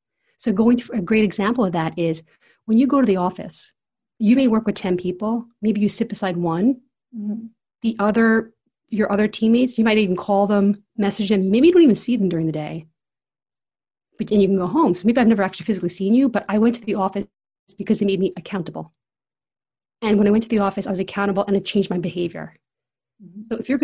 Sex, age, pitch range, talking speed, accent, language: female, 30-49, 185-220 Hz, 225 wpm, American, English